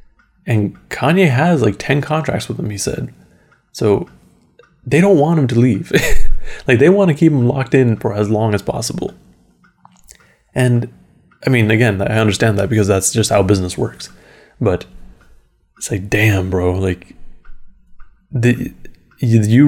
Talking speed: 155 wpm